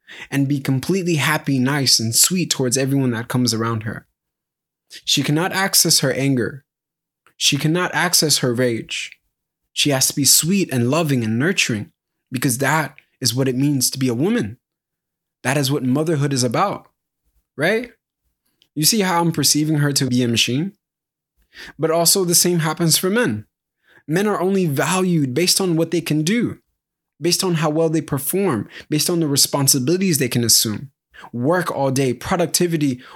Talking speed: 170 wpm